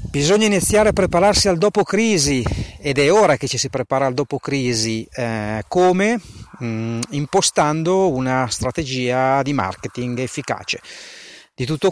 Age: 40-59